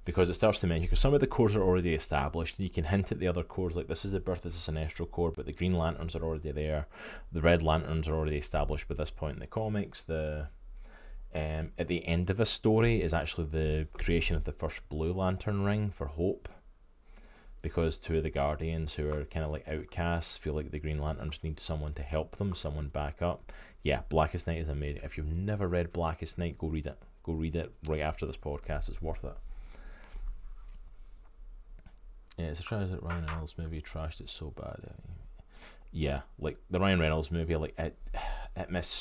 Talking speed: 210 wpm